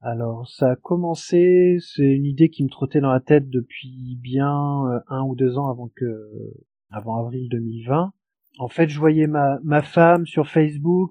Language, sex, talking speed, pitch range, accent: French, male, 180 wpm, 120-150 Hz, French